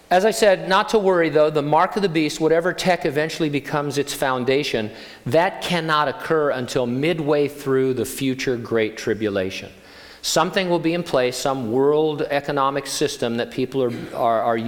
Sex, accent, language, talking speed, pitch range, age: male, American, English, 170 wpm, 110-140 Hz, 50-69